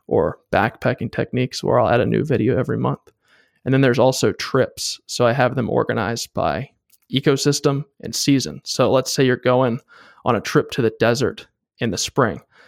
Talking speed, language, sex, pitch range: 185 wpm, English, male, 120-145 Hz